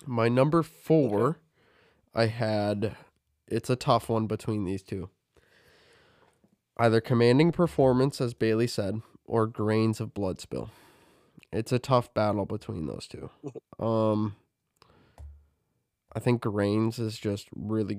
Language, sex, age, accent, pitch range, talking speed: English, male, 20-39, American, 105-120 Hz, 125 wpm